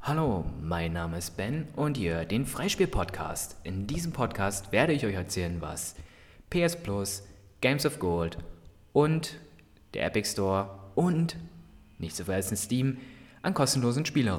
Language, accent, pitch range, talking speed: English, German, 95-130 Hz, 140 wpm